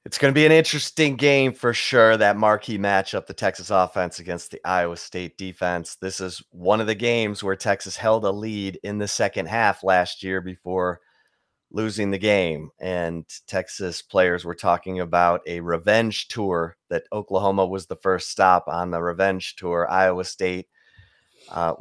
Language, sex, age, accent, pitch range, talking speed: English, male, 30-49, American, 85-100 Hz, 175 wpm